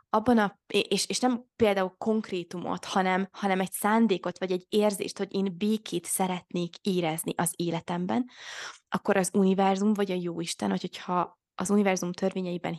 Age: 20-39